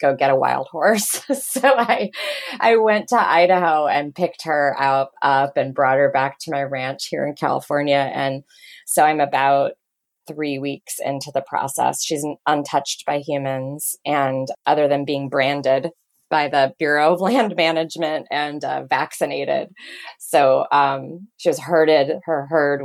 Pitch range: 140-160 Hz